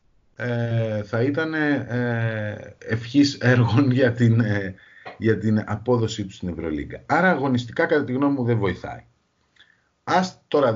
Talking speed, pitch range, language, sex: 135 wpm, 100-130 Hz, Greek, male